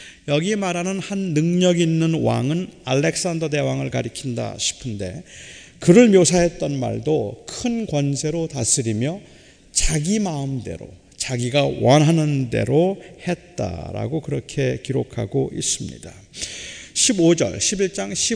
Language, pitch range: Korean, 125-175 Hz